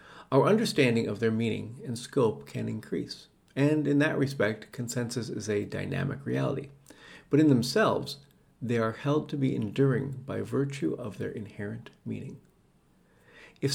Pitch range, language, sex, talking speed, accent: 115-140 Hz, English, male, 150 wpm, American